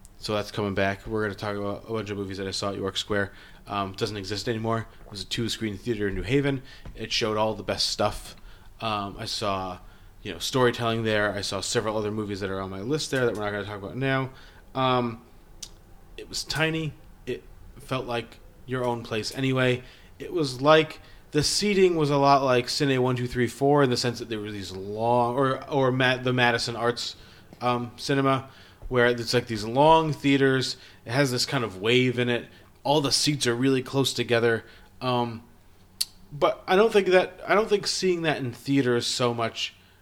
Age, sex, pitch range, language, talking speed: 20-39, male, 100-125 Hz, English, 210 wpm